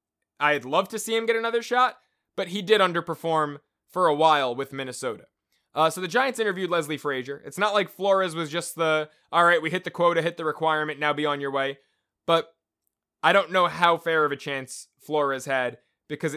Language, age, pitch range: English, 20-39, 145-180 Hz